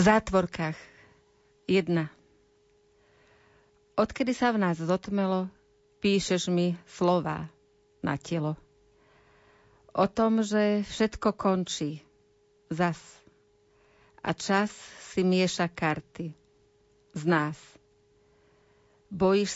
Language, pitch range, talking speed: Slovak, 140-195 Hz, 80 wpm